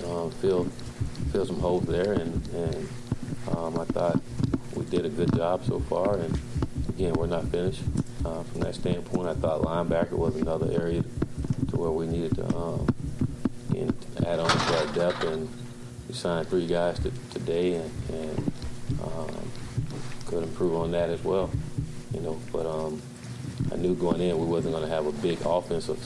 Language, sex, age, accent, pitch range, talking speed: English, male, 30-49, American, 85-120 Hz, 180 wpm